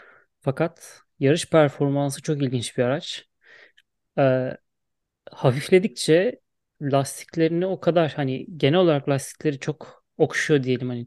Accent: native